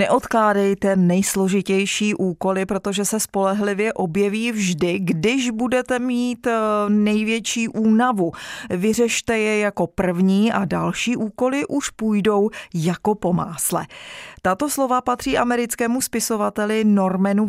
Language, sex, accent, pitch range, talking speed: Czech, female, native, 180-230 Hz, 105 wpm